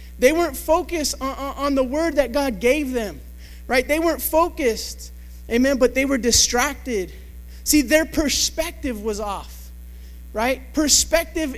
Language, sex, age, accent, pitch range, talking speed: English, male, 30-49, American, 240-295 Hz, 140 wpm